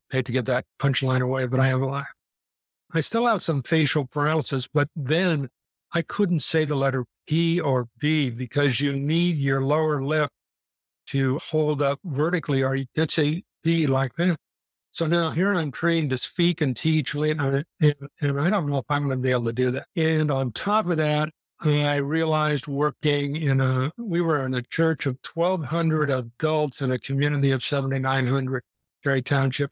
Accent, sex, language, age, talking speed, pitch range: American, male, English, 60-79, 185 wpm, 130-150 Hz